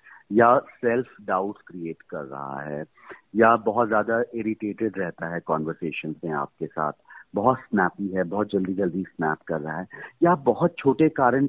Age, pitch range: 40-59, 95-115 Hz